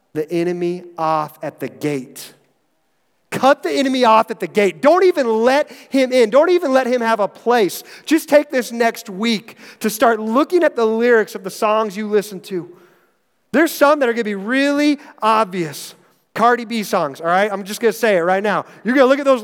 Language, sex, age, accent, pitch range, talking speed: English, male, 30-49, American, 175-255 Hz, 215 wpm